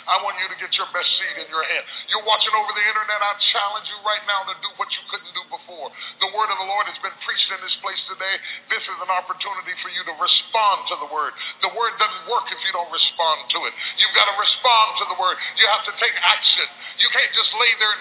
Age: 40-59